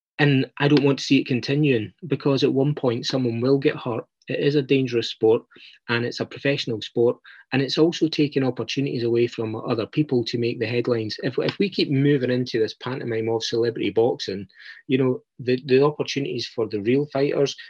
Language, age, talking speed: English, 30-49, 200 wpm